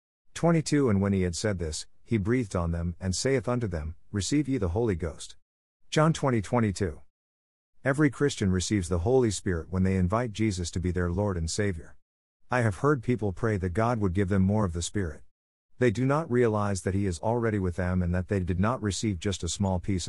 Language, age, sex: English, 50-69, male